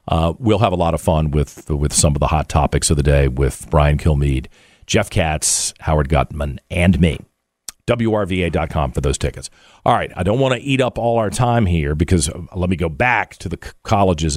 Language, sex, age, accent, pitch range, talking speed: English, male, 40-59, American, 80-130 Hz, 210 wpm